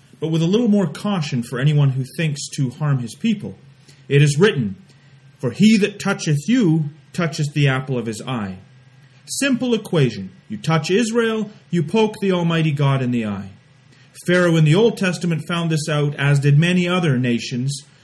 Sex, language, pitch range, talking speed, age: male, English, 135-180 Hz, 180 wpm, 30-49